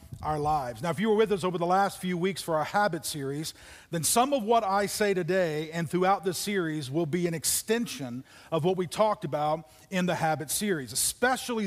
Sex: male